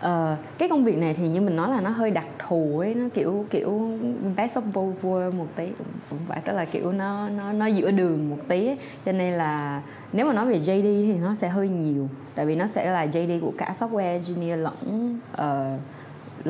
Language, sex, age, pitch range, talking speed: Vietnamese, female, 20-39, 155-210 Hz, 220 wpm